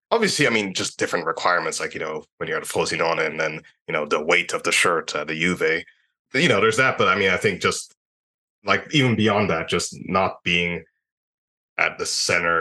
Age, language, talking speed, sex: 20-39, English, 215 wpm, male